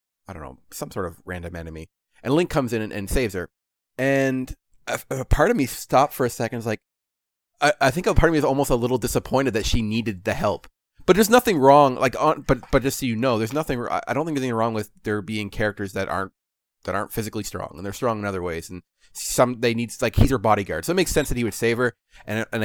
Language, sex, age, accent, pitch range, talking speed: English, male, 30-49, American, 100-130 Hz, 260 wpm